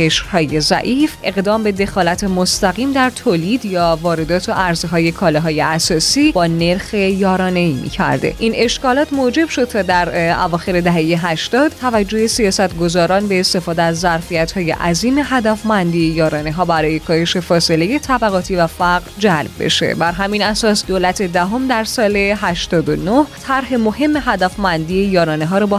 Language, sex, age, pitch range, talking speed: Persian, female, 10-29, 170-230 Hz, 155 wpm